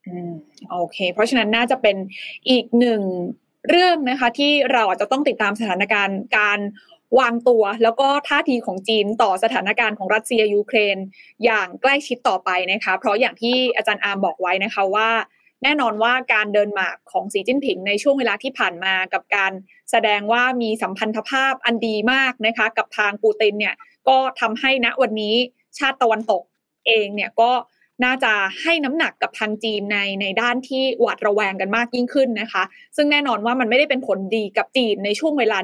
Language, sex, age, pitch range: Thai, female, 20-39, 205-260 Hz